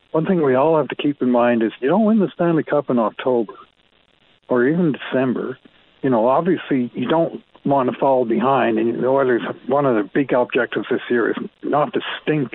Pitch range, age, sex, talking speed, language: 125-155 Hz, 60-79, male, 210 wpm, English